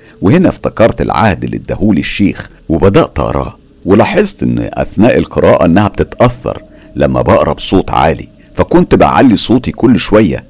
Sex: male